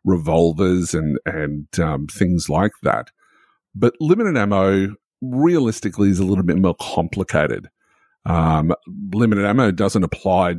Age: 50-69